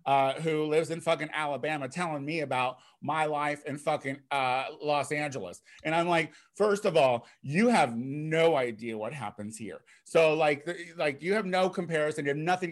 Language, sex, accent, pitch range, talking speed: English, male, American, 140-185 Hz, 185 wpm